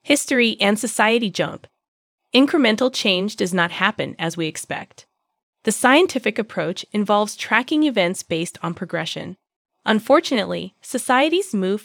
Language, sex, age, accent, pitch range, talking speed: English, female, 20-39, American, 180-235 Hz, 120 wpm